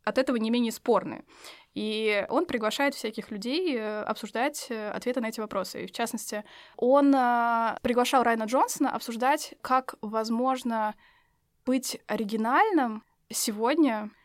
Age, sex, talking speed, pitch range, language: 20-39, female, 120 wpm, 210-250 Hz, Russian